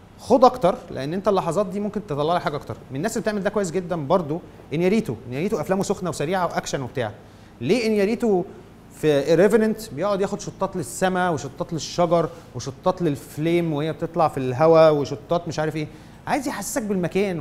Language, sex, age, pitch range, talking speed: Arabic, male, 30-49, 140-200 Hz, 180 wpm